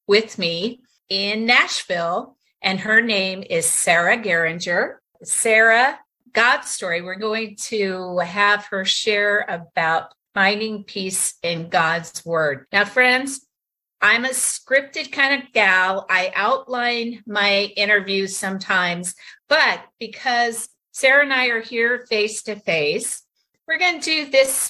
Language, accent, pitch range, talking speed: English, American, 190-240 Hz, 130 wpm